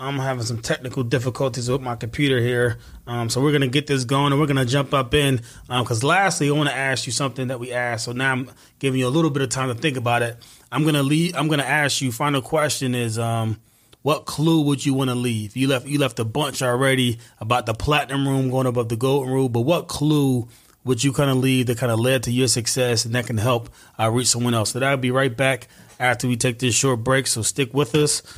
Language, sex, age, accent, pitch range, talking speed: English, male, 30-49, American, 120-145 Hz, 260 wpm